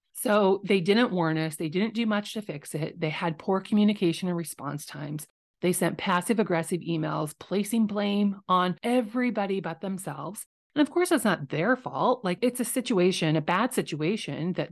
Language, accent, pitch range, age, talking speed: English, American, 160-205 Hz, 30-49, 185 wpm